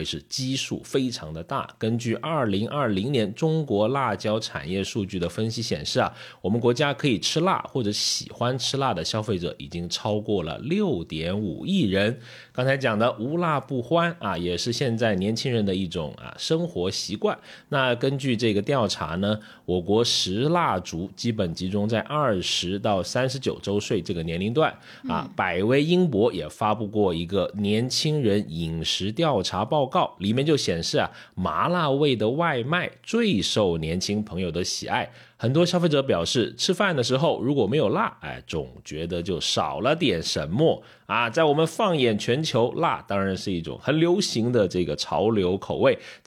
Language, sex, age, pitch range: Chinese, male, 30-49, 95-140 Hz